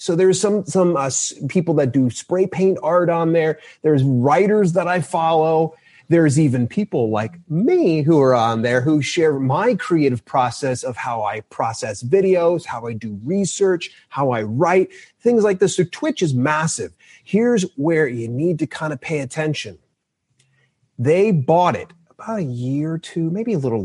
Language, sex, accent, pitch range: English, male, American, 125-175 Hz